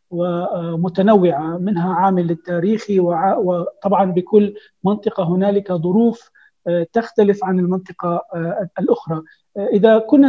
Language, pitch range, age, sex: Arabic, 180-210 Hz, 40-59, male